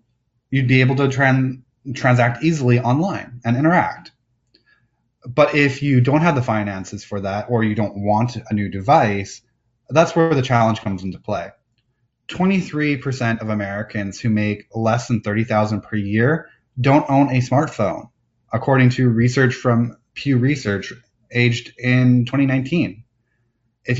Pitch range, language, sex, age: 115-140 Hz, English, male, 20-39